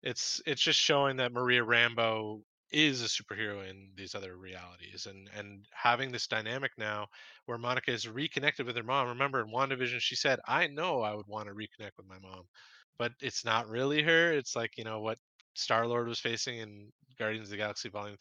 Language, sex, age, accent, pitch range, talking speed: English, male, 20-39, American, 110-135 Hz, 205 wpm